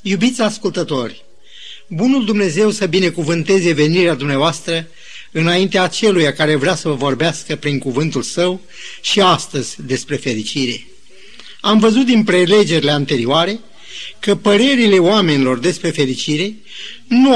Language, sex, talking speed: Romanian, male, 115 wpm